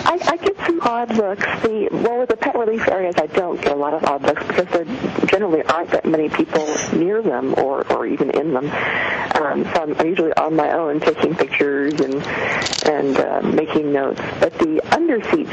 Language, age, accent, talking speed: English, 40-59, American, 200 wpm